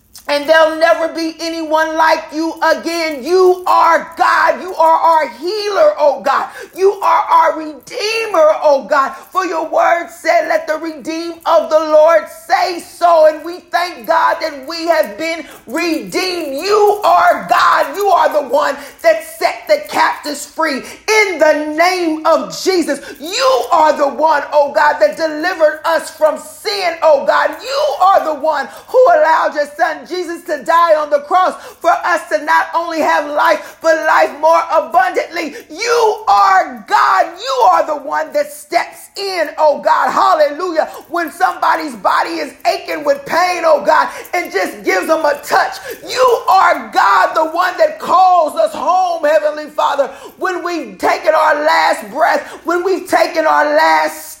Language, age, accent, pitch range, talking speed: English, 40-59, American, 310-345 Hz, 165 wpm